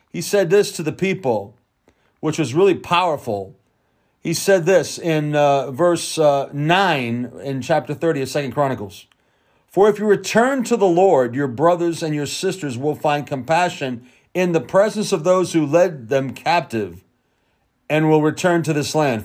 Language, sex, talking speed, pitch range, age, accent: English, male, 170 wpm, 145-190 Hz, 40-59, American